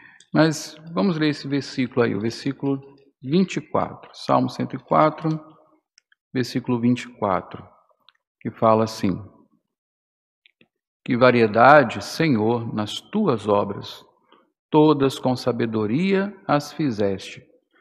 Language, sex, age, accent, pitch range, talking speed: Portuguese, male, 50-69, Brazilian, 115-155 Hz, 90 wpm